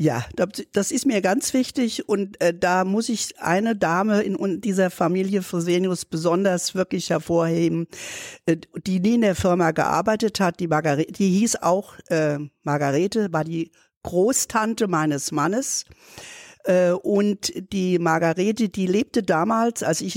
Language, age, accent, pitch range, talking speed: German, 50-69, German, 165-205 Hz, 145 wpm